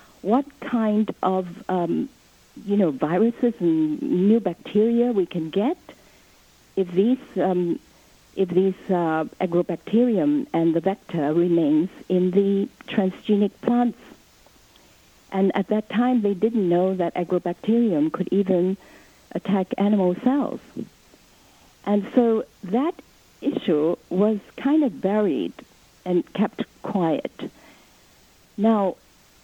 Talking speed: 110 wpm